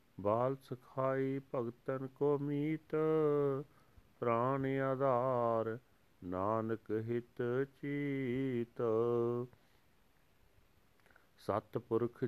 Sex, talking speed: male, 55 wpm